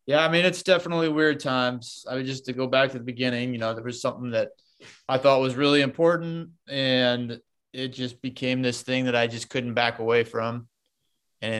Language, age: English, 20-39